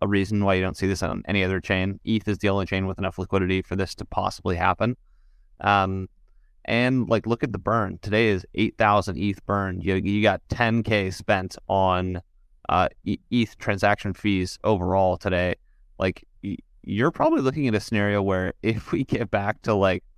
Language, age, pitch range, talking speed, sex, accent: English, 30-49, 95-110 Hz, 185 wpm, male, American